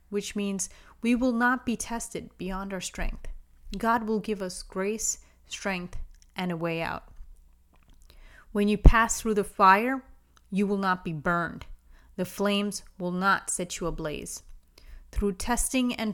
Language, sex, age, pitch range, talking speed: English, female, 30-49, 160-205 Hz, 155 wpm